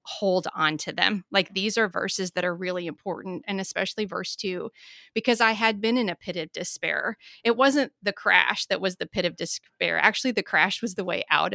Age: 30-49